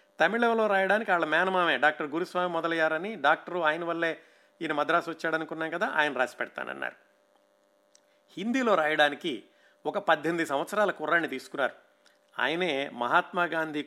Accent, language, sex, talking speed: native, Telugu, male, 115 wpm